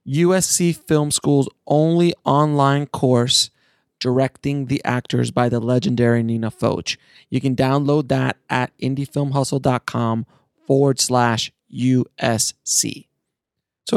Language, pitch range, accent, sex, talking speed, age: English, 120-140 Hz, American, male, 105 wpm, 30-49